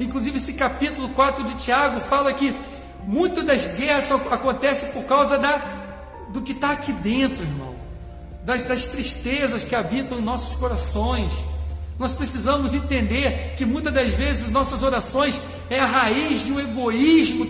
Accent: Brazilian